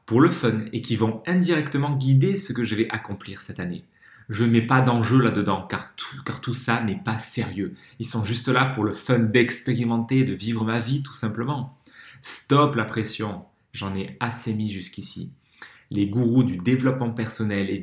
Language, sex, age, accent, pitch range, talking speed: French, male, 30-49, French, 110-135 Hz, 190 wpm